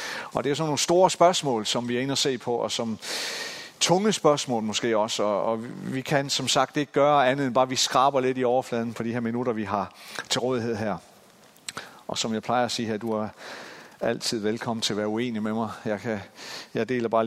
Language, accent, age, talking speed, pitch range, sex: Danish, native, 40-59, 235 wpm, 115-140 Hz, male